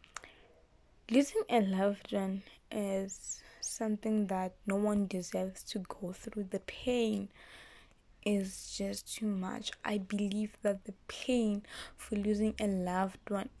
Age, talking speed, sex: 20-39, 130 wpm, female